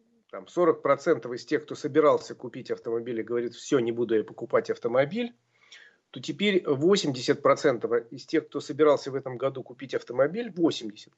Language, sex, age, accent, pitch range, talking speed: Russian, male, 40-59, native, 130-170 Hz, 150 wpm